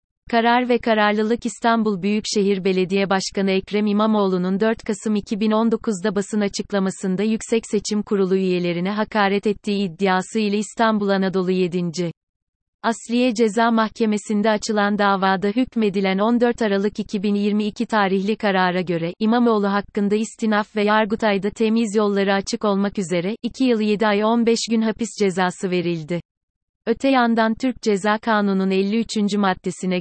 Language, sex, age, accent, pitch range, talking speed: Turkish, female, 30-49, native, 195-225 Hz, 125 wpm